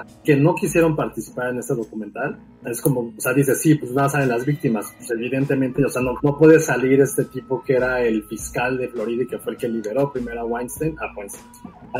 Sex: male